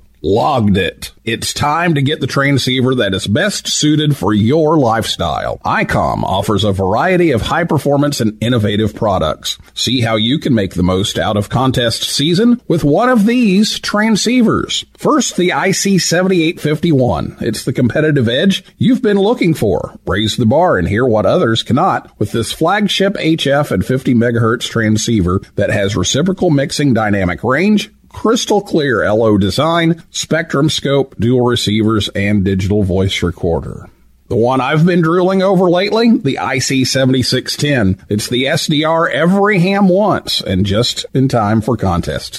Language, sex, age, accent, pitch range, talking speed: English, male, 50-69, American, 110-165 Hz, 150 wpm